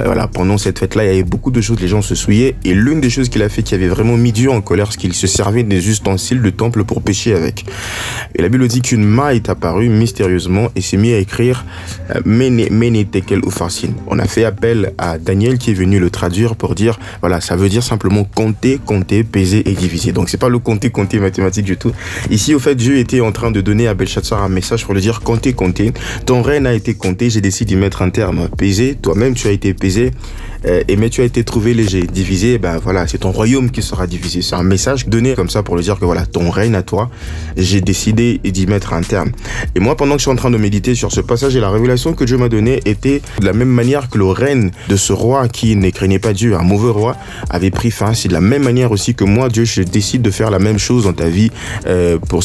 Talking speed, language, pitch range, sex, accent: 265 wpm, French, 95-120 Hz, male, French